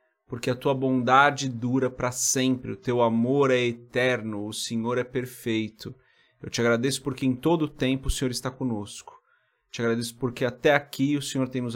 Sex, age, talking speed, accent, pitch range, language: male, 30-49, 190 wpm, Brazilian, 115-130 Hz, Portuguese